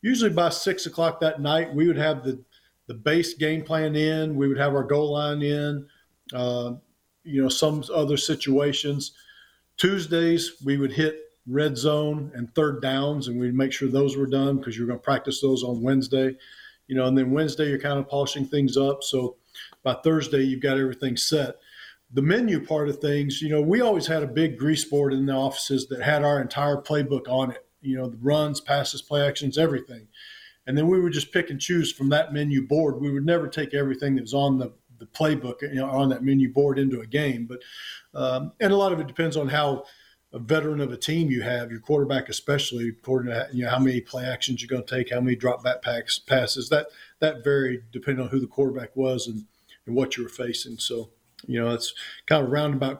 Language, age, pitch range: English, 40-59, 130-150 Hz